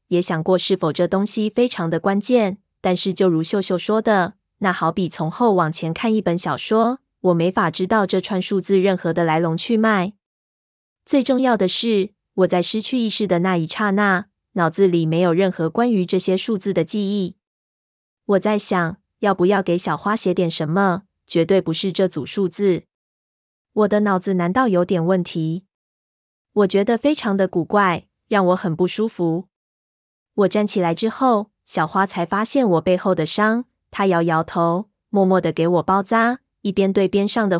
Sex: female